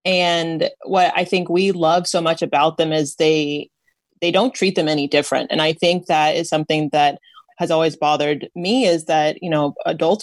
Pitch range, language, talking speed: 155-175 Hz, English, 200 wpm